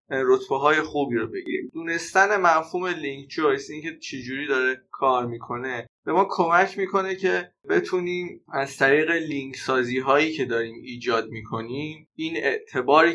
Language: Persian